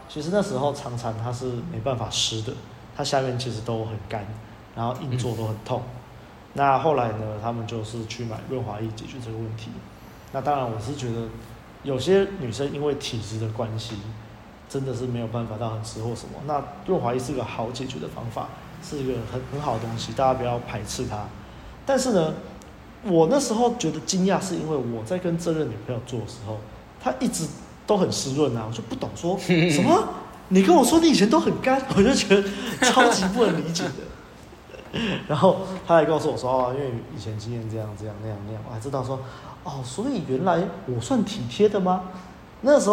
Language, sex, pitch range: Chinese, male, 115-160 Hz